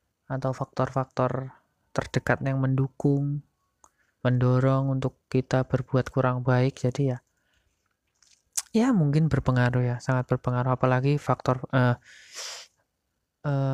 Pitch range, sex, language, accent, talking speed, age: 130-150 Hz, male, Indonesian, native, 100 wpm, 20-39